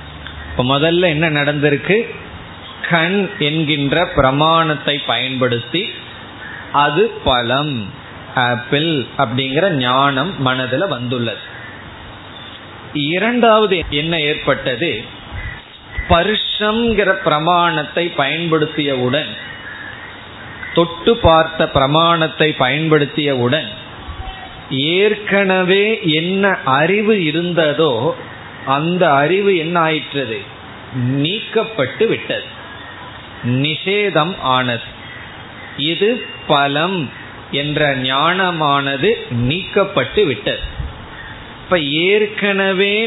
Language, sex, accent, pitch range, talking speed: Tamil, male, native, 135-180 Hz, 40 wpm